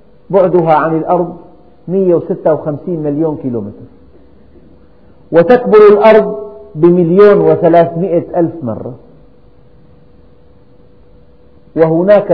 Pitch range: 135-180 Hz